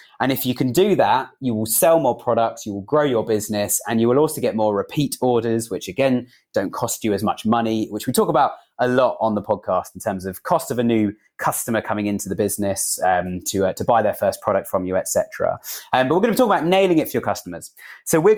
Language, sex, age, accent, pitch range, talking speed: English, male, 30-49, British, 105-140 Hz, 255 wpm